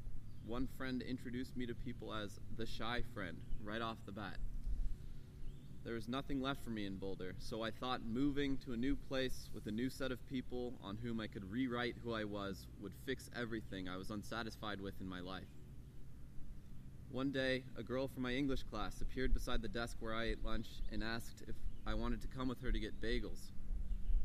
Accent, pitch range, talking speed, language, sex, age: American, 105-130 Hz, 205 wpm, English, male, 20-39